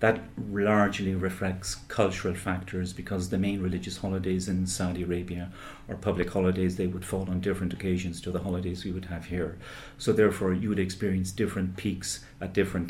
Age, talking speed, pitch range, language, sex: 40-59, 175 wpm, 90-100 Hz, English, male